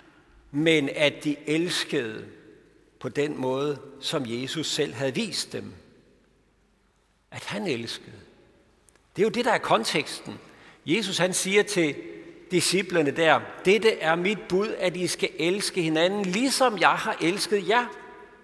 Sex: male